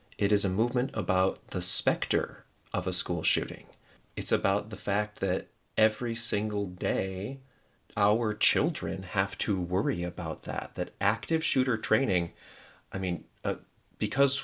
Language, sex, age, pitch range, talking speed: English, male, 30-49, 95-110 Hz, 140 wpm